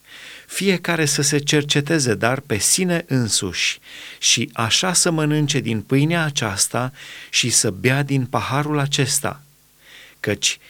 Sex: male